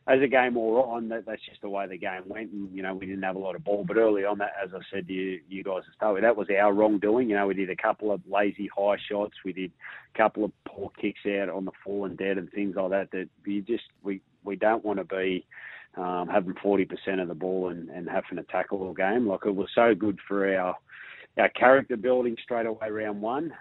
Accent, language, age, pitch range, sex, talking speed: Australian, English, 30-49, 95-105 Hz, male, 260 wpm